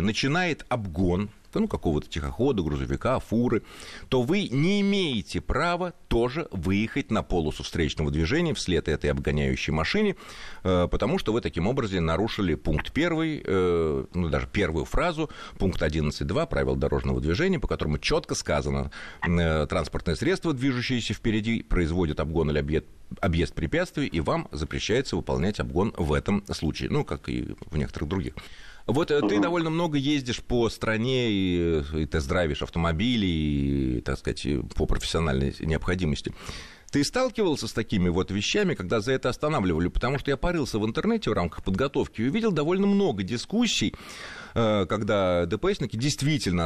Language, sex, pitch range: Russian, male, 80-130 Hz